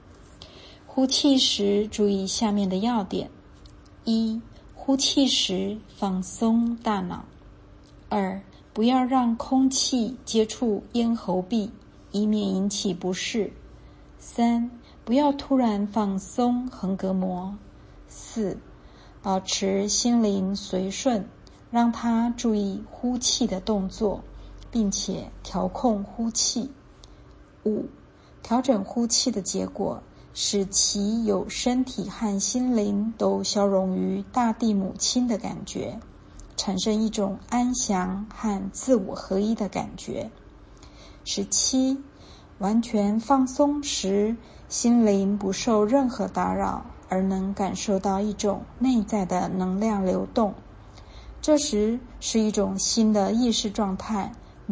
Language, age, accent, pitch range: Chinese, 50-69, native, 195-235 Hz